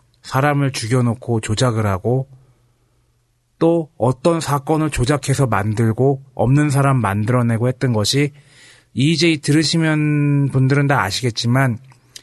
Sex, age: male, 40-59